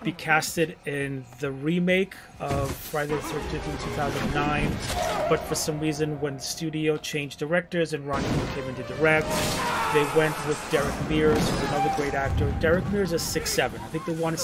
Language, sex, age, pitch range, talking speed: English, male, 30-49, 145-170 Hz, 180 wpm